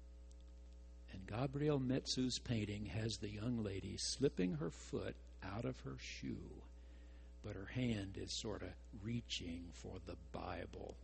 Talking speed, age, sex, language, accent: 130 wpm, 60-79, male, English, American